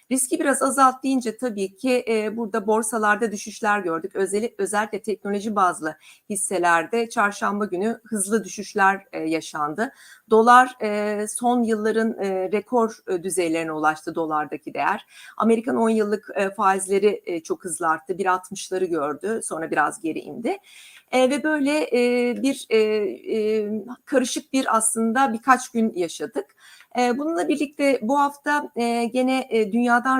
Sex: female